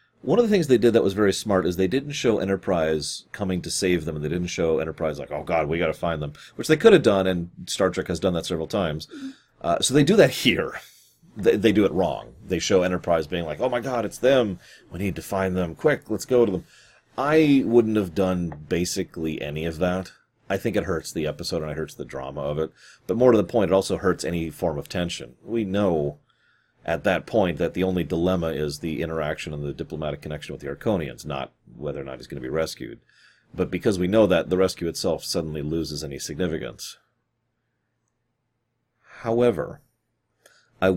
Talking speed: 220 wpm